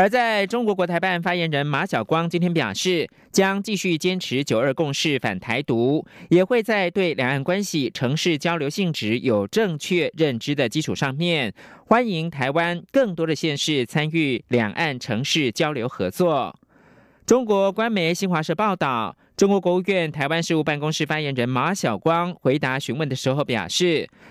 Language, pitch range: French, 135-190 Hz